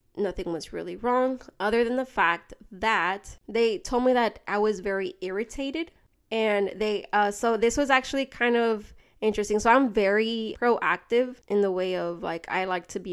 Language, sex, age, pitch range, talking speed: English, female, 20-39, 185-230 Hz, 185 wpm